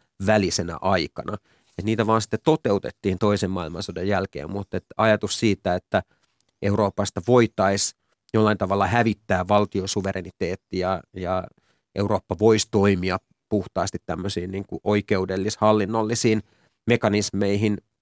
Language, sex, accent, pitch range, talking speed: Finnish, male, native, 95-110 Hz, 95 wpm